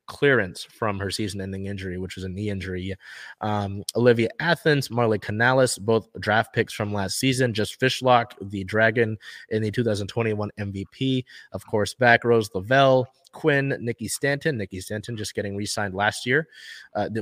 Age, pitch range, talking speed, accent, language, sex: 20-39, 105-125 Hz, 155 wpm, American, English, male